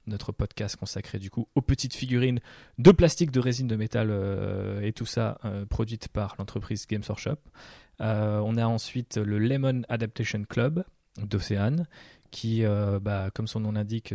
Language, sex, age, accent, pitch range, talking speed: French, male, 20-39, French, 105-120 Hz, 170 wpm